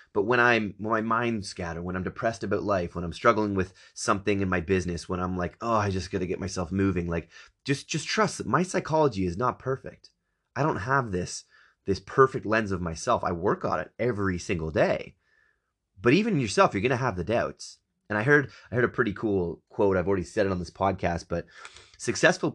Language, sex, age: English, male, 30-49